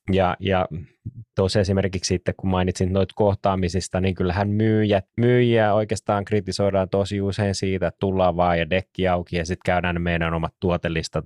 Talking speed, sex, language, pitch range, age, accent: 160 wpm, male, Finnish, 85-100 Hz, 20-39, native